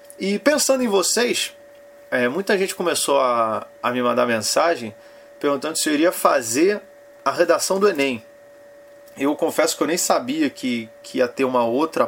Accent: Brazilian